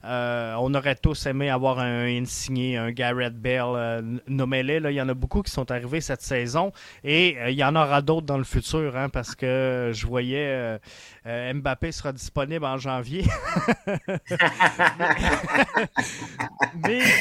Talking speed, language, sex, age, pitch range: 165 wpm, French, male, 30-49, 135-190 Hz